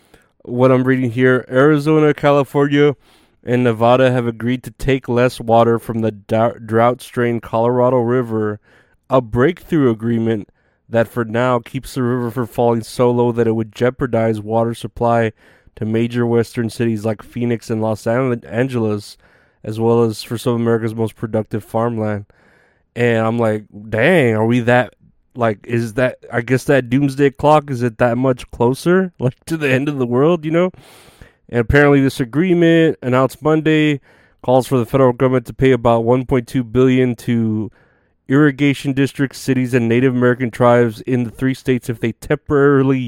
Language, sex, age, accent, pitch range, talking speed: English, male, 20-39, American, 115-130 Hz, 165 wpm